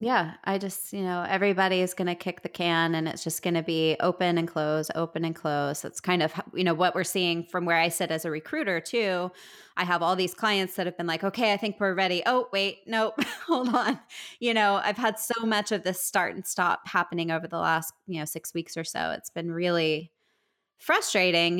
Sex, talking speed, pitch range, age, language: female, 235 wpm, 170-210 Hz, 20-39, English